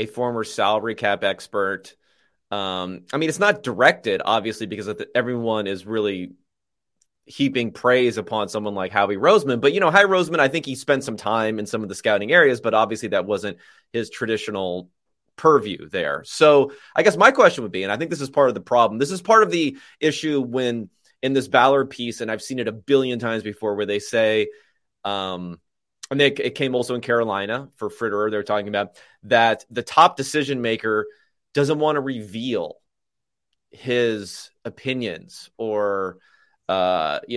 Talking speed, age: 180 wpm, 30-49